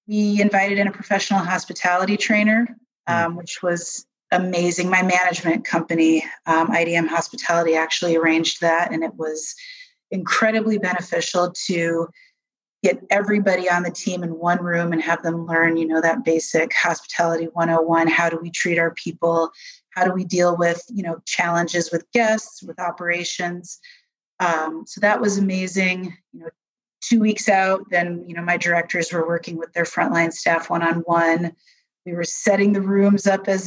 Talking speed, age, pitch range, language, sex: 160 wpm, 30-49, 170-210 Hz, English, female